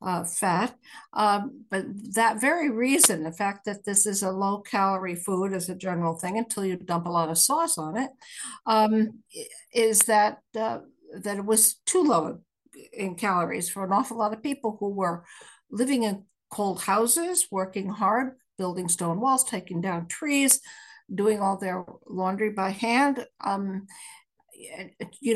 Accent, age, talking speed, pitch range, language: American, 60-79, 160 wpm, 195-250 Hz, English